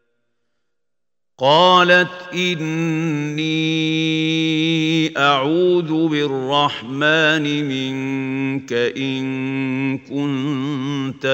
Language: Arabic